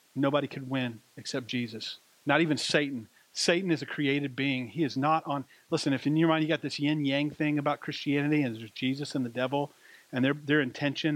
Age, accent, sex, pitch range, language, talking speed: 40-59, American, male, 135-155 Hz, English, 210 wpm